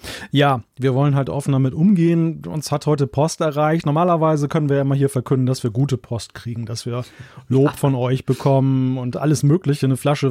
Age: 30-49